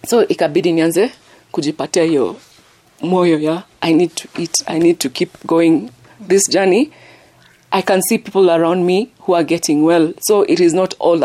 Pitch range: 160-195 Hz